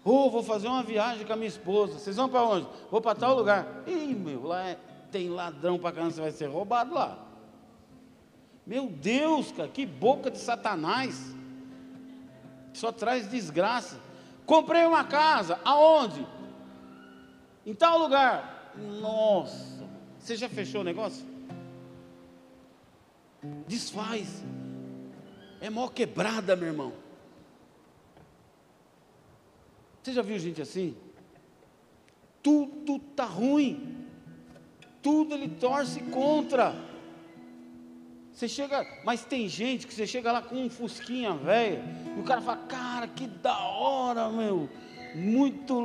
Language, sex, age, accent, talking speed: Portuguese, male, 50-69, Brazilian, 120 wpm